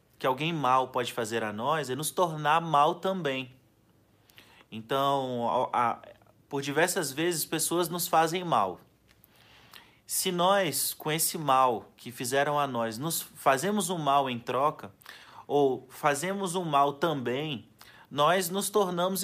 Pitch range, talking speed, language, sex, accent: 130-180 Hz, 135 wpm, Portuguese, male, Brazilian